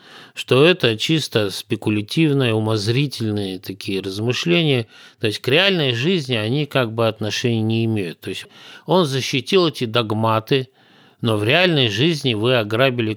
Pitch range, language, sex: 105-140 Hz, Russian, male